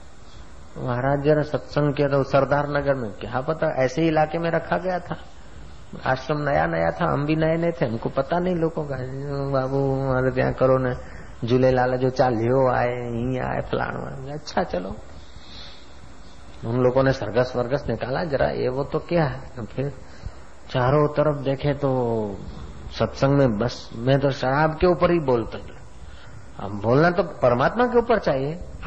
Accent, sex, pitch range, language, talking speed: native, male, 110-155 Hz, Hindi, 115 wpm